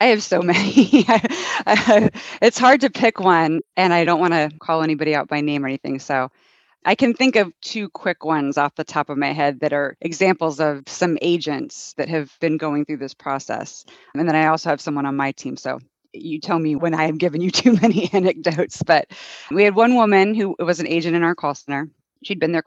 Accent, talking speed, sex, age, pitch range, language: American, 220 wpm, female, 30-49, 145-185 Hz, English